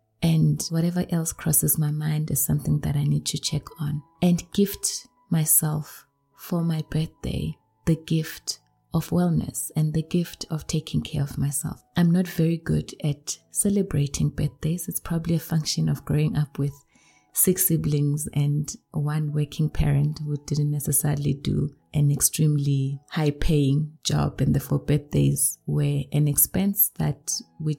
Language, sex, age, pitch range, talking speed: English, female, 20-39, 145-165 Hz, 155 wpm